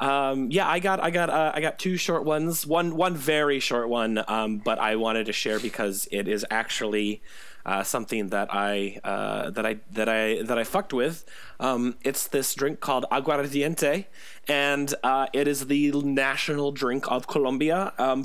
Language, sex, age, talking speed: English, male, 30-49, 185 wpm